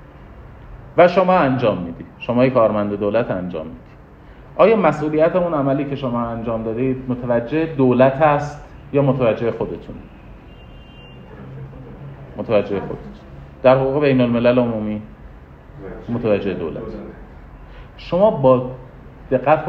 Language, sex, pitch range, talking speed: Persian, male, 105-130 Hz, 105 wpm